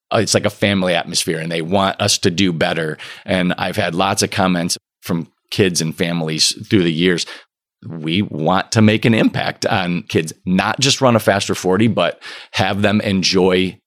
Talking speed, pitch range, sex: 185 wpm, 85-110 Hz, male